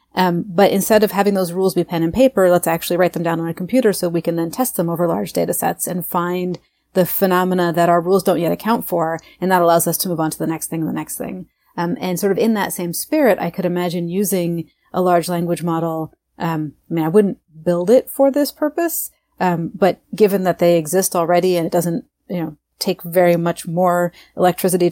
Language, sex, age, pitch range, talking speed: English, female, 30-49, 170-190 Hz, 235 wpm